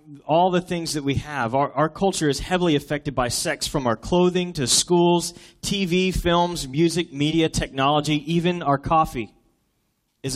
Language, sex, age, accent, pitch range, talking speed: English, male, 30-49, American, 130-170 Hz, 160 wpm